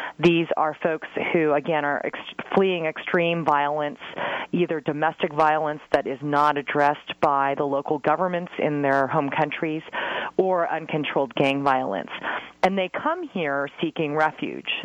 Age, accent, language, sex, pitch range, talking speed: 30-49, American, English, female, 145-165 Hz, 140 wpm